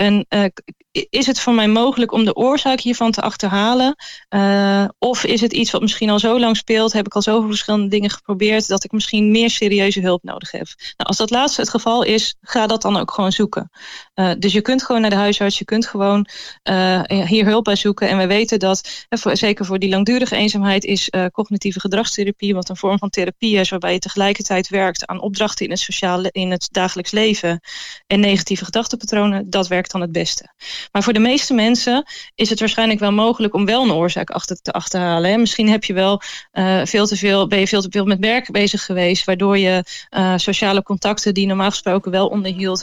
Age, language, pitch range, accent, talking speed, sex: 20-39, Dutch, 190-220 Hz, Dutch, 210 wpm, female